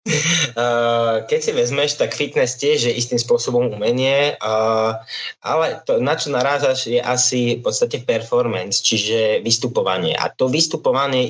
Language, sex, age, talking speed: Slovak, male, 20-39, 140 wpm